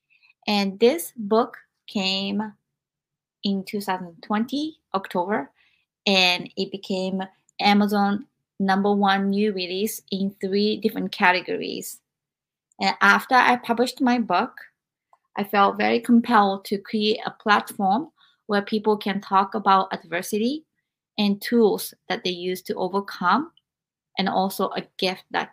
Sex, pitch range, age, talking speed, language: female, 190-215 Hz, 20-39, 120 wpm, English